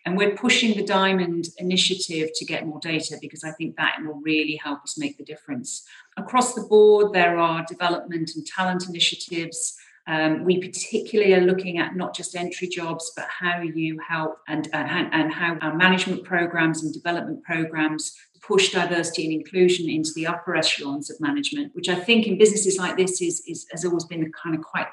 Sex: female